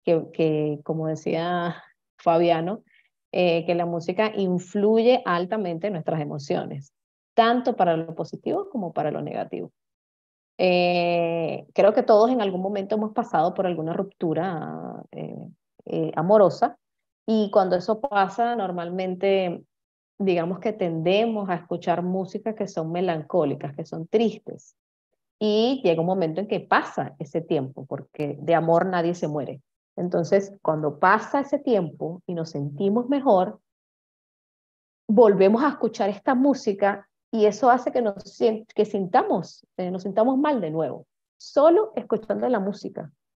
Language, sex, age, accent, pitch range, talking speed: Portuguese, female, 30-49, American, 170-215 Hz, 140 wpm